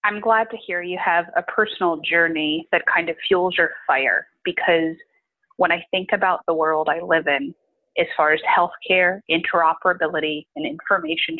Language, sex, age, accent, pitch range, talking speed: English, female, 30-49, American, 170-220 Hz, 170 wpm